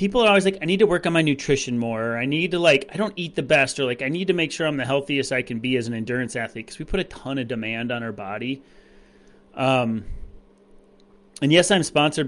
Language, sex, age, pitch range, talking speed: English, male, 30-49, 115-140 Hz, 260 wpm